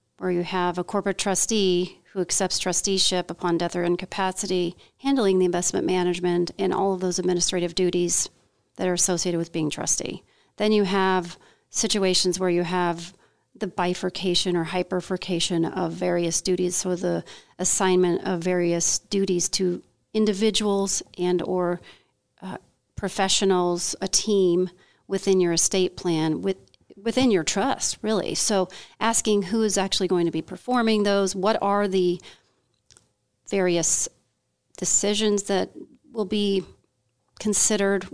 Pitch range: 175-195 Hz